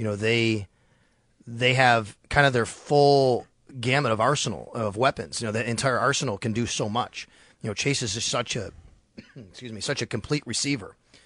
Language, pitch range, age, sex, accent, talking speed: English, 110-140 Hz, 30-49, male, American, 190 wpm